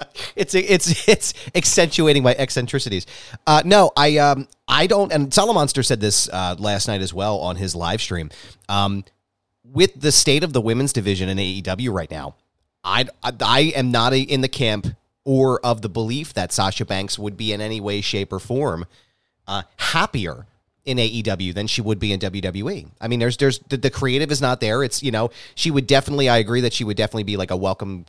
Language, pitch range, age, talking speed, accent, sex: English, 100-135 Hz, 30-49, 205 wpm, American, male